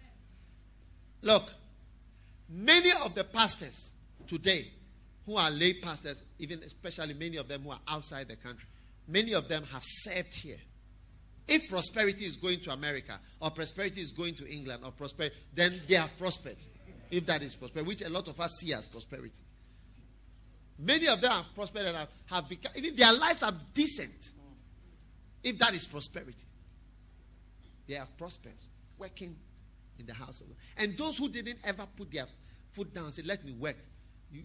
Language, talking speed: English, 165 wpm